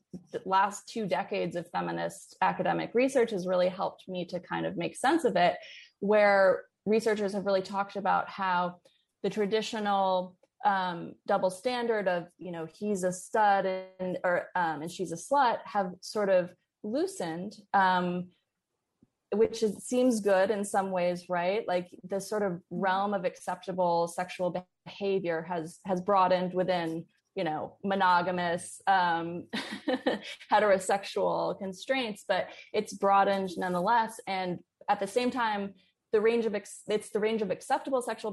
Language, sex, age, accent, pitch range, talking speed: English, female, 20-39, American, 180-205 Hz, 150 wpm